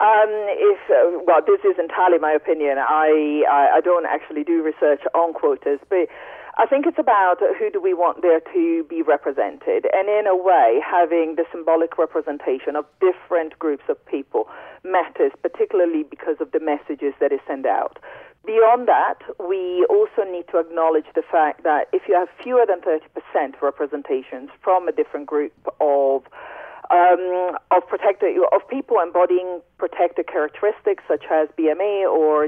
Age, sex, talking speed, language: 40-59, female, 160 wpm, English